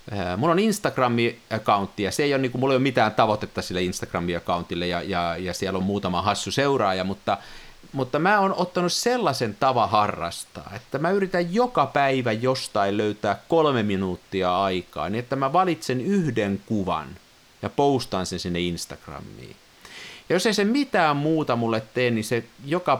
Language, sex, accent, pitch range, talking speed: Finnish, male, native, 100-145 Hz, 160 wpm